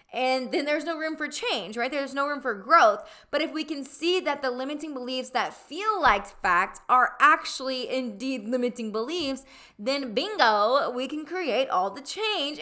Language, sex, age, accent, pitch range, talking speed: English, female, 20-39, American, 215-285 Hz, 185 wpm